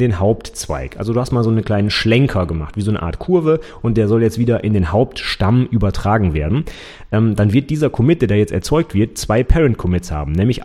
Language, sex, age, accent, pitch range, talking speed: German, male, 30-49, German, 100-135 Hz, 230 wpm